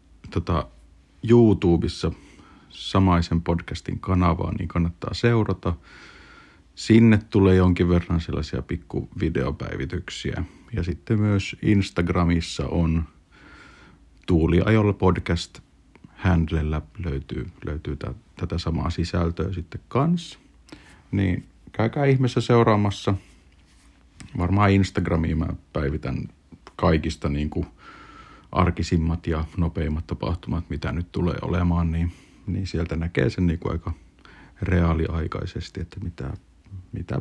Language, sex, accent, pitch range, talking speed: Finnish, male, native, 80-95 Hz, 100 wpm